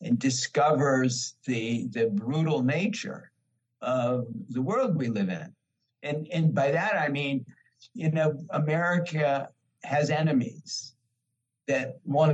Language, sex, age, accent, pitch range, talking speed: English, male, 60-79, American, 120-150 Hz, 120 wpm